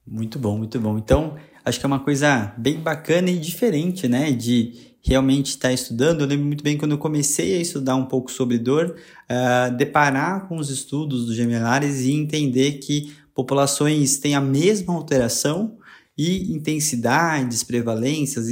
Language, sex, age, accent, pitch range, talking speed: Portuguese, male, 20-39, Brazilian, 130-155 Hz, 160 wpm